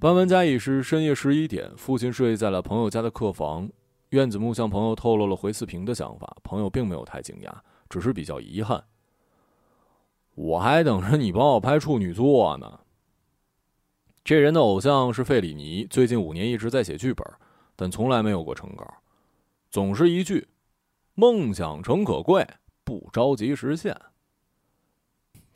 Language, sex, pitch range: Chinese, male, 105-150 Hz